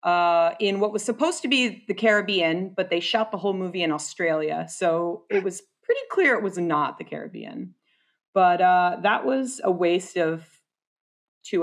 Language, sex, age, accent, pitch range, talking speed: English, female, 30-49, American, 170-225 Hz, 180 wpm